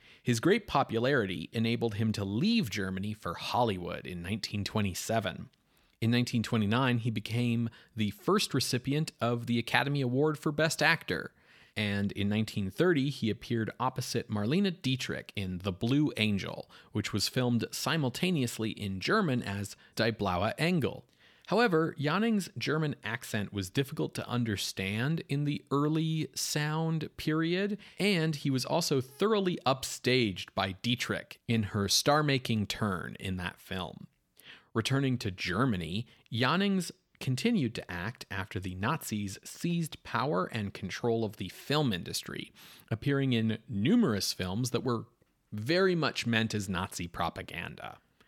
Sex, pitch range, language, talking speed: male, 105-150 Hz, English, 130 wpm